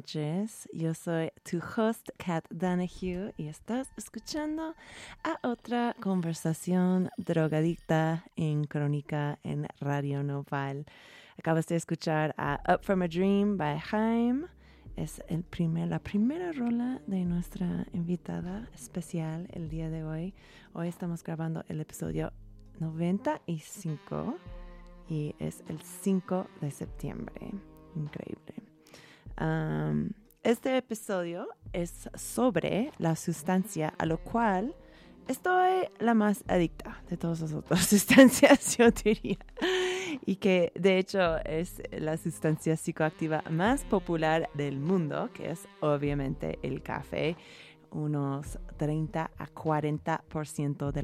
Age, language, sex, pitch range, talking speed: 30-49, Spanish, female, 155-200 Hz, 115 wpm